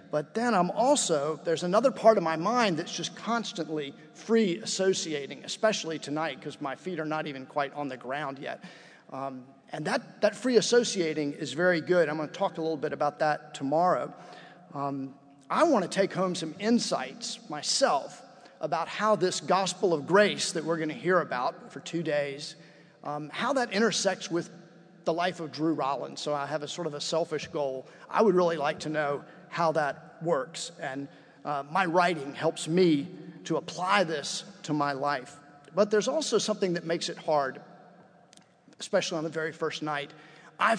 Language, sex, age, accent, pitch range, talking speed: English, male, 40-59, American, 150-185 Hz, 185 wpm